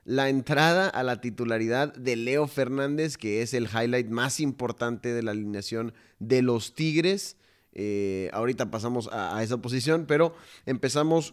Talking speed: 155 wpm